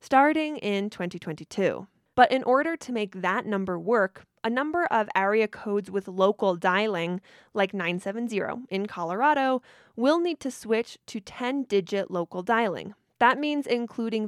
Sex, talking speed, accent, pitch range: female, 145 wpm, American, 195-245 Hz